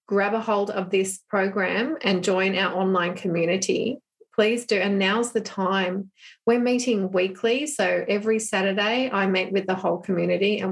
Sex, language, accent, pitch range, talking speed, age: female, English, Australian, 190-235 Hz, 170 wpm, 30-49